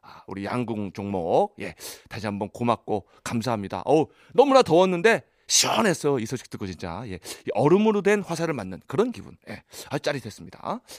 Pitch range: 115-180 Hz